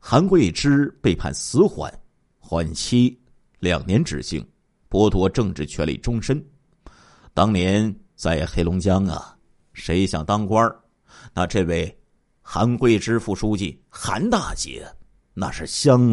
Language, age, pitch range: Chinese, 50-69, 100-145 Hz